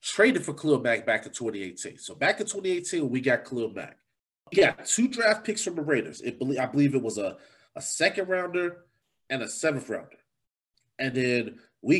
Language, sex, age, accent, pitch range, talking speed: English, male, 30-49, American, 115-155 Hz, 195 wpm